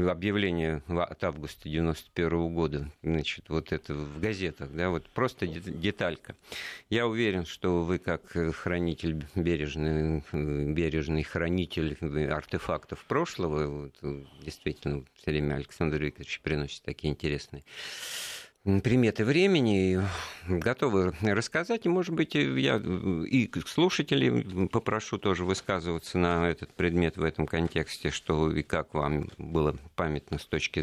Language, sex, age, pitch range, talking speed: Russian, male, 50-69, 80-100 Hz, 115 wpm